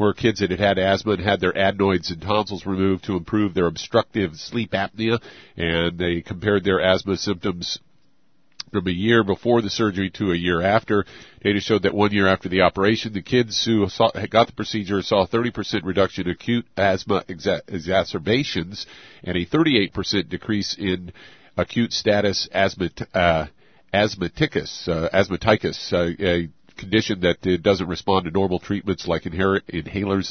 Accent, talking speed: American, 150 wpm